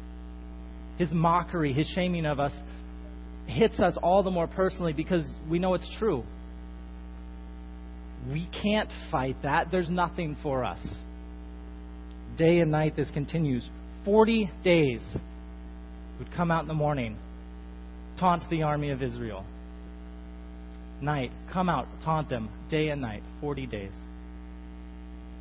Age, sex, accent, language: 30-49, male, American, English